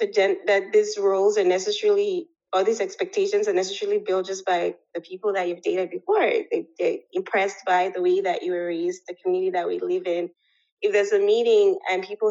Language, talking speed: English, 200 wpm